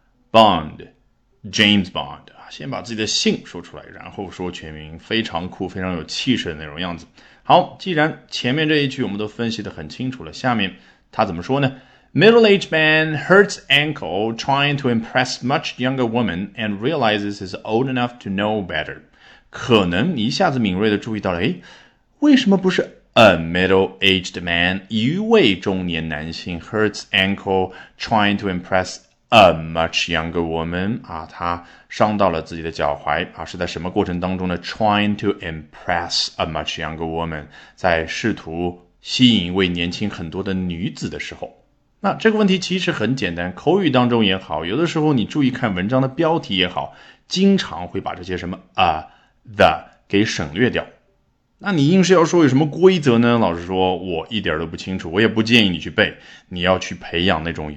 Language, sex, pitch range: Chinese, male, 85-130 Hz